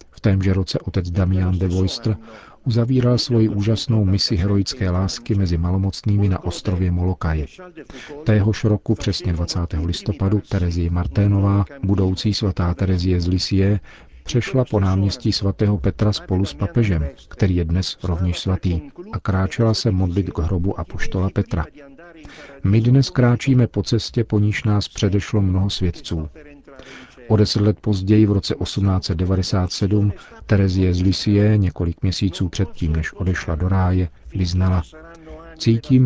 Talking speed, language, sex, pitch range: 135 wpm, Czech, male, 90-110 Hz